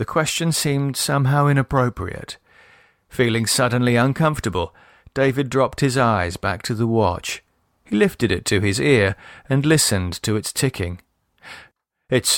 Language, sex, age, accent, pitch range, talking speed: English, male, 40-59, British, 105-135 Hz, 135 wpm